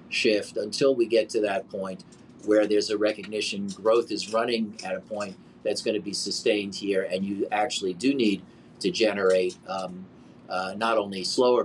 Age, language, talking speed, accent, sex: 40-59, English, 180 wpm, American, male